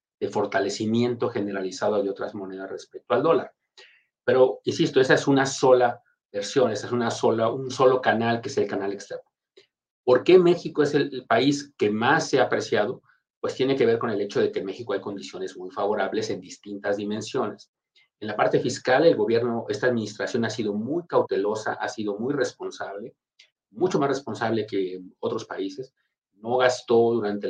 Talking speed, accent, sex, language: 180 wpm, Mexican, male, Spanish